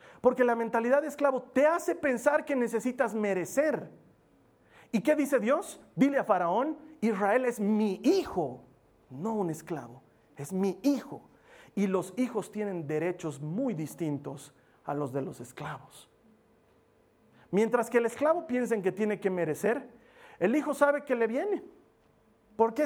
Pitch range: 210-290 Hz